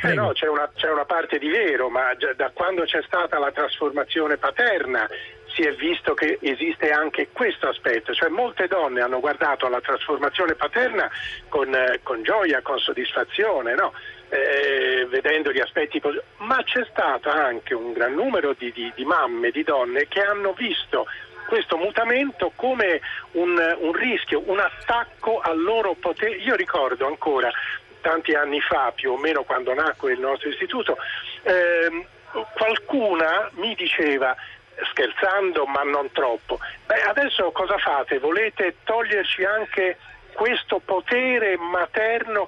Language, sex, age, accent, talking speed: Italian, male, 40-59, native, 145 wpm